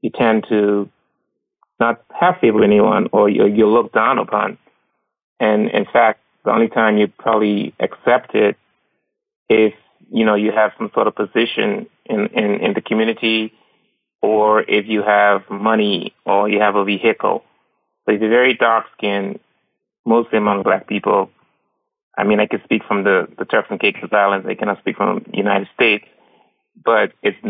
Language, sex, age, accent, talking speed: English, male, 30-49, American, 165 wpm